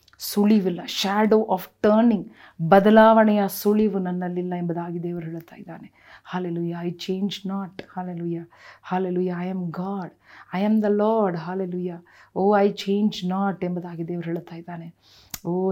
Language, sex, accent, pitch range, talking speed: Kannada, female, native, 170-200 Hz, 130 wpm